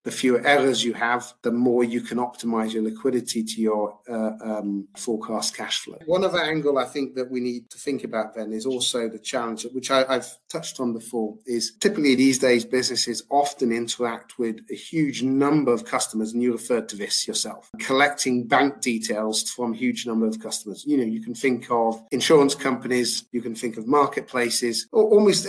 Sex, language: male, English